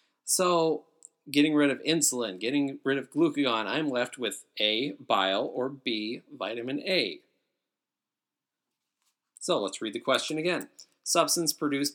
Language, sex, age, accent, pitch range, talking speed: English, male, 30-49, American, 115-165 Hz, 130 wpm